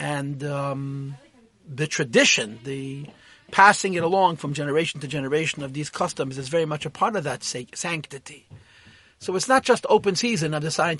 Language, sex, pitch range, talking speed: English, male, 140-175 Hz, 170 wpm